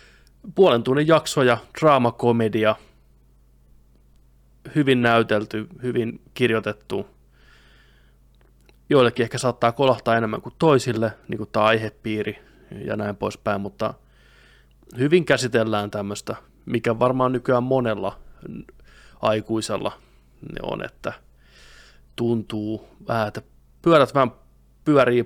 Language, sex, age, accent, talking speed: Finnish, male, 20-39, native, 95 wpm